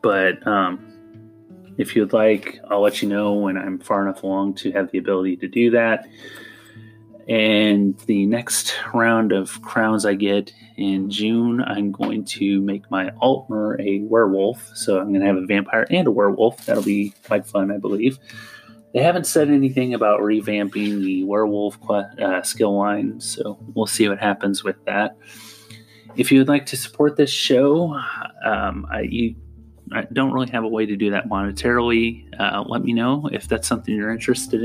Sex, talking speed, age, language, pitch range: male, 175 wpm, 30-49, English, 100-115 Hz